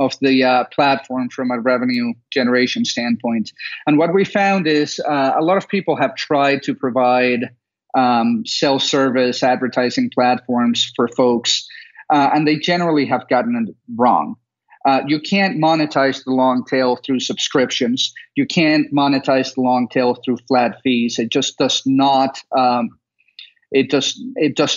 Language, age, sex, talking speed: English, 40-59, male, 155 wpm